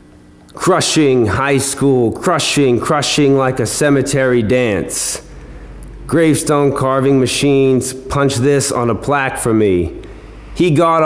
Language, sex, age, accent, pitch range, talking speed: English, male, 30-49, American, 120-150 Hz, 115 wpm